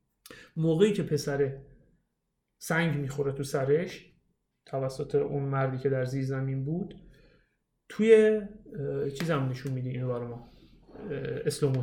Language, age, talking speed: Persian, 30-49, 105 wpm